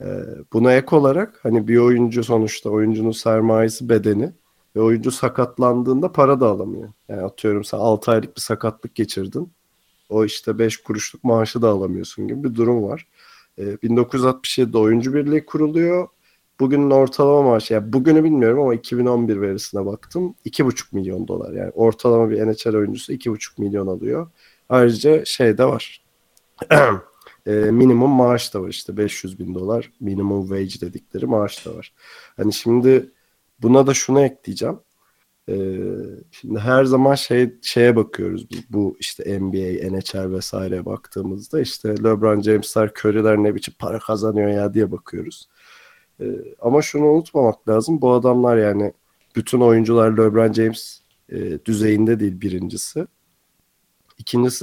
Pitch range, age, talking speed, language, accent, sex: 105-130 Hz, 40-59, 140 wpm, Turkish, native, male